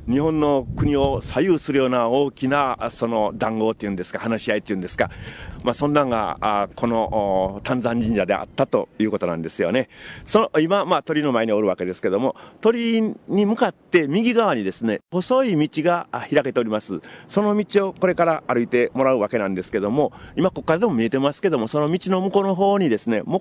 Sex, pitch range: male, 105-155 Hz